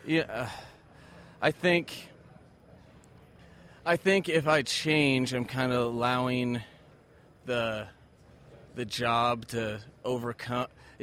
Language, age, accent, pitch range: English, 30-49, American, 115-135 Hz